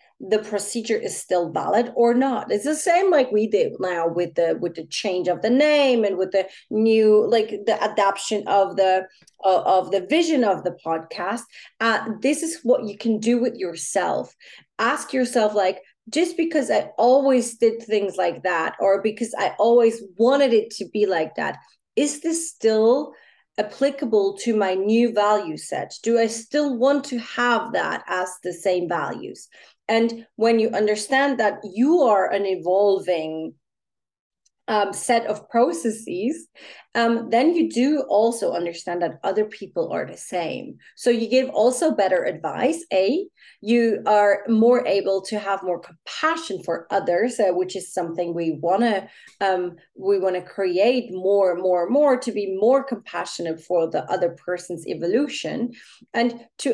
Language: English